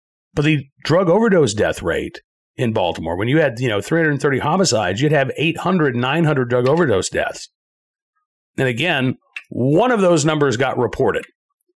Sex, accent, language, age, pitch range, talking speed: male, American, English, 40-59, 125-160 Hz, 155 wpm